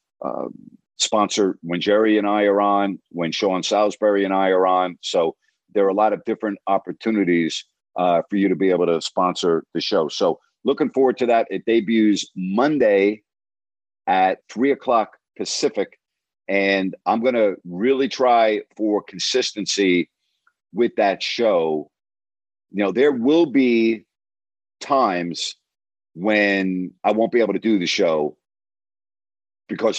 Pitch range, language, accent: 95-110 Hz, English, American